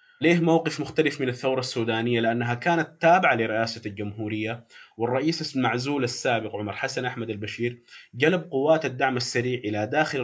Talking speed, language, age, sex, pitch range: 140 wpm, Arabic, 20-39, male, 115-135 Hz